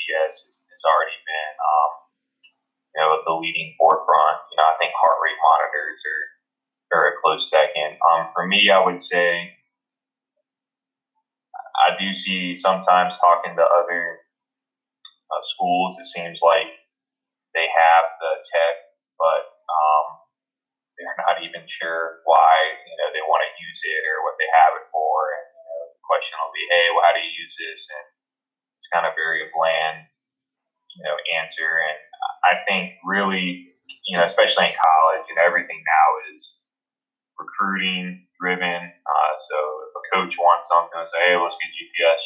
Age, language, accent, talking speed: 20-39, English, American, 160 wpm